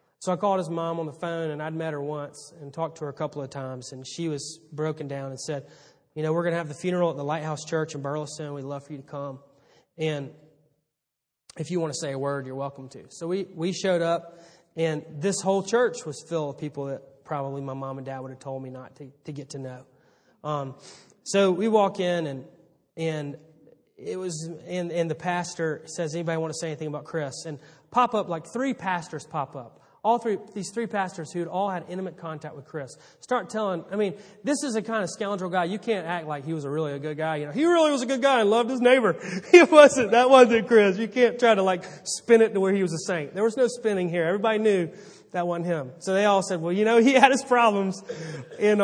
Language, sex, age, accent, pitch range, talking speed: English, male, 30-49, American, 150-195 Hz, 250 wpm